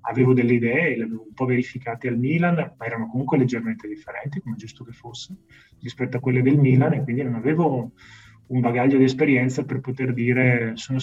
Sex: male